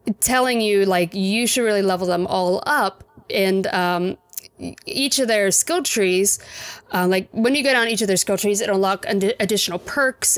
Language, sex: English, female